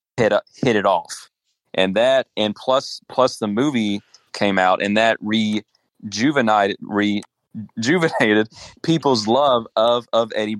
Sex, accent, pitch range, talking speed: male, American, 100-120 Hz, 125 wpm